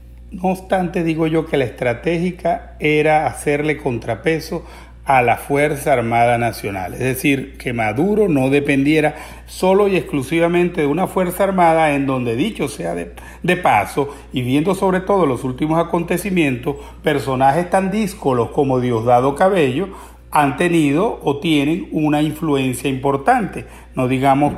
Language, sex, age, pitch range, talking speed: Spanish, male, 50-69, 130-165 Hz, 140 wpm